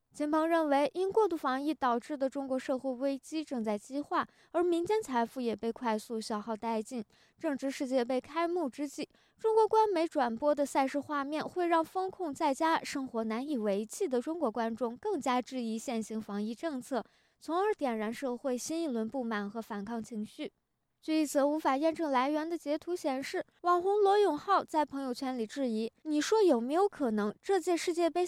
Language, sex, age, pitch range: Chinese, female, 20-39, 235-320 Hz